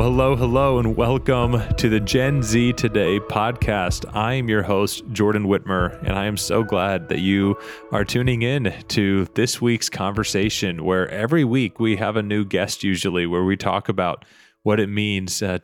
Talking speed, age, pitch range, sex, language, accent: 180 wpm, 30-49, 95-115 Hz, male, English, American